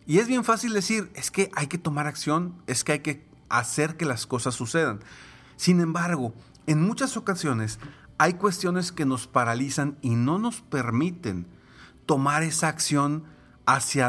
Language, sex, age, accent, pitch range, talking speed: Spanish, male, 40-59, Mexican, 125-160 Hz, 160 wpm